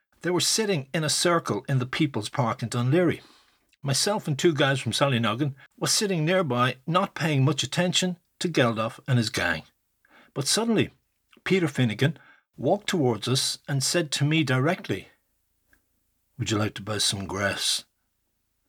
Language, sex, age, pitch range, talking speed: English, male, 60-79, 115-155 Hz, 160 wpm